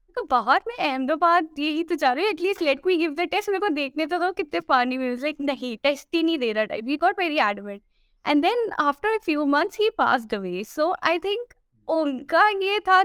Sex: female